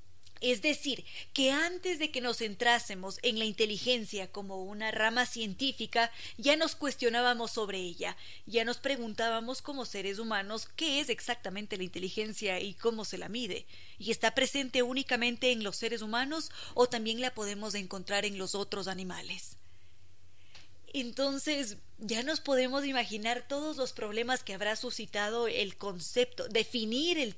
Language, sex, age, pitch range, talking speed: Spanish, female, 20-39, 200-260 Hz, 150 wpm